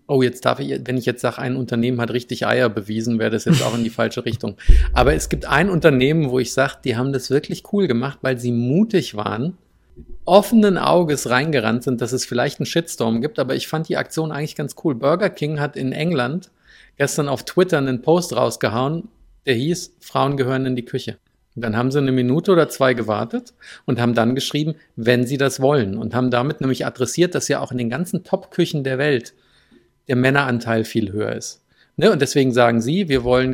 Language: German